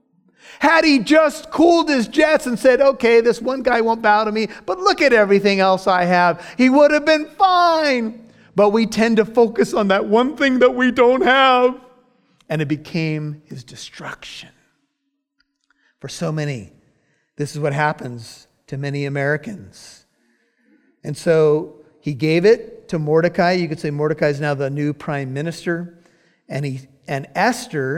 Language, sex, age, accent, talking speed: English, male, 50-69, American, 165 wpm